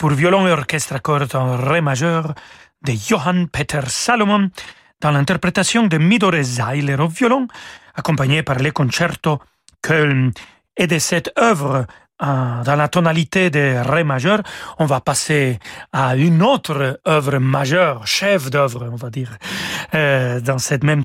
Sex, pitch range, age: male, 135-185 Hz, 40-59